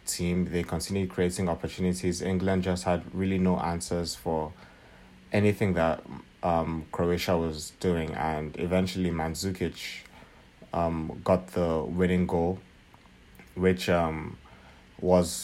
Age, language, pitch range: 30-49, English, 85-95 Hz